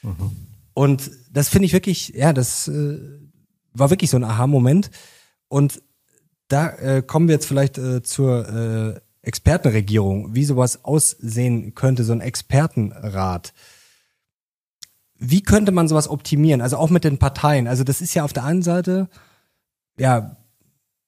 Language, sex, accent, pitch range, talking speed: German, male, German, 125-150 Hz, 140 wpm